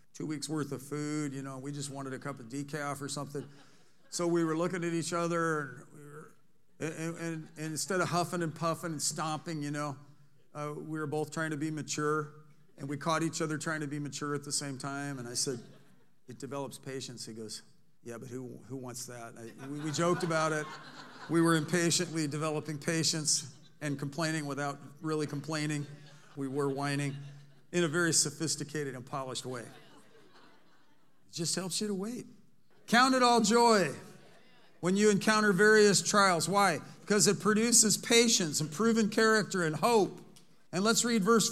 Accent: American